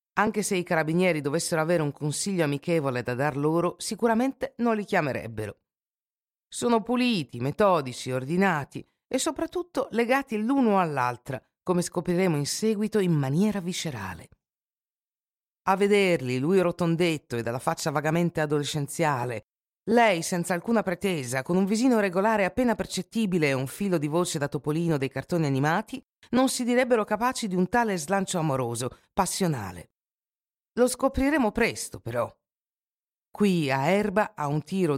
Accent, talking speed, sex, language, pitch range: native, 140 wpm, female, Italian, 140-210 Hz